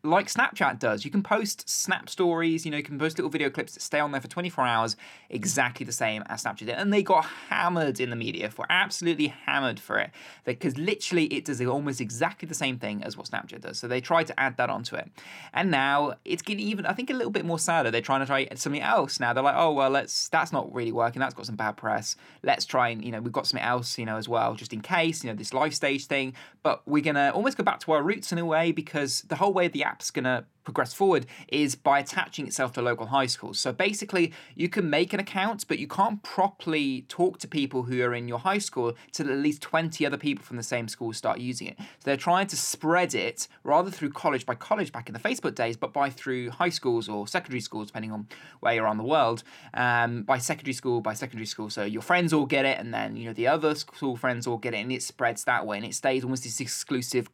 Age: 20-39